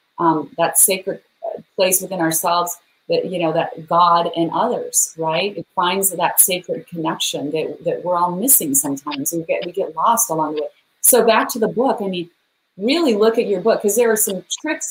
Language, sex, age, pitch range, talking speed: English, female, 30-49, 175-220 Hz, 200 wpm